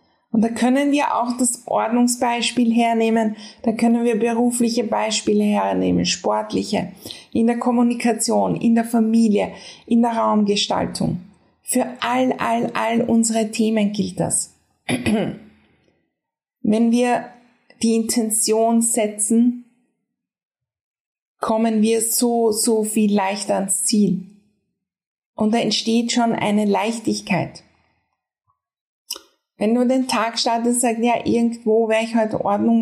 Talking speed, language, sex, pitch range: 115 wpm, German, female, 215-240 Hz